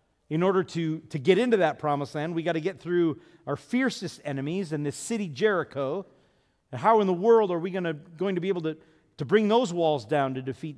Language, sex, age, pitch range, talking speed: English, male, 40-59, 135-195 Hz, 230 wpm